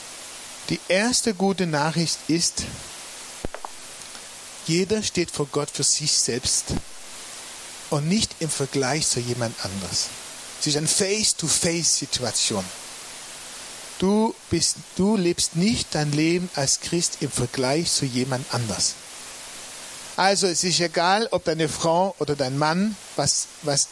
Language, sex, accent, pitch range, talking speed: German, male, German, 145-185 Hz, 125 wpm